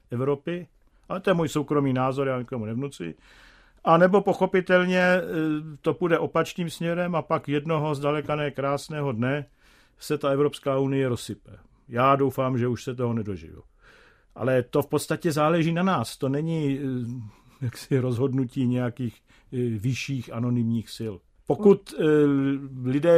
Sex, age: male, 50-69